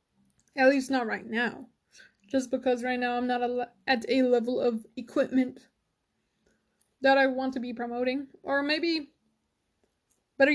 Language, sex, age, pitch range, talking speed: English, female, 20-39, 230-260 Hz, 155 wpm